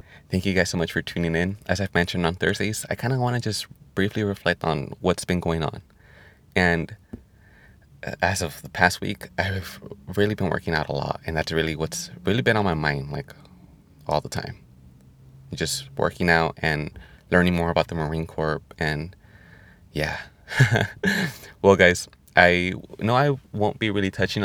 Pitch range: 80-100 Hz